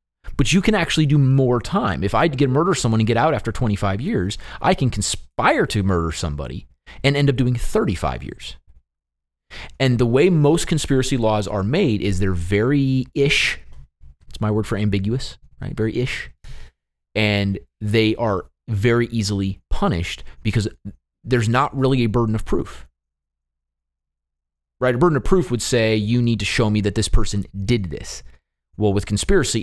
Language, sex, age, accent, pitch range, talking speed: English, male, 30-49, American, 90-120 Hz, 170 wpm